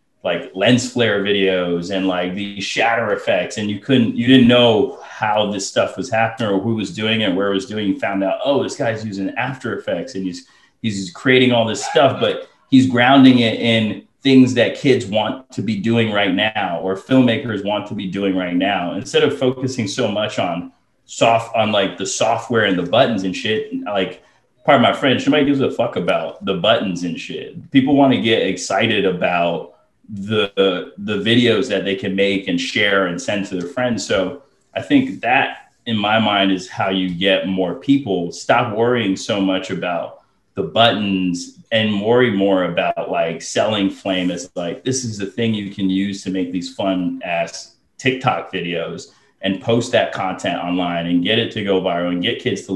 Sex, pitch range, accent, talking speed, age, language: male, 95-120 Hz, American, 200 wpm, 30-49, English